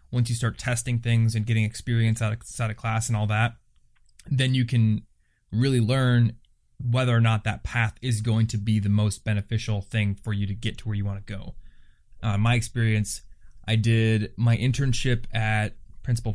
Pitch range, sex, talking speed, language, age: 110-125 Hz, male, 185 wpm, English, 20-39